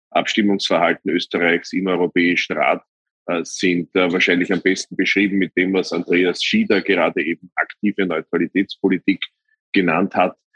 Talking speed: 120 wpm